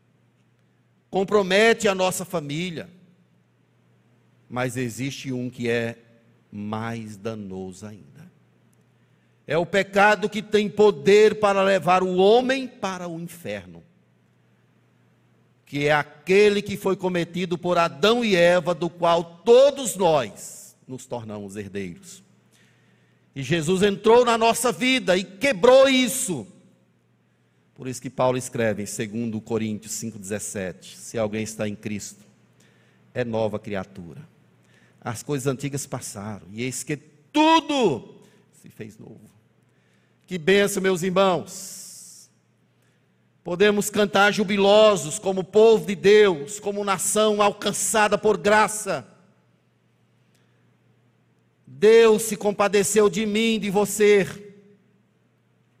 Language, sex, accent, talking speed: Portuguese, male, Brazilian, 110 wpm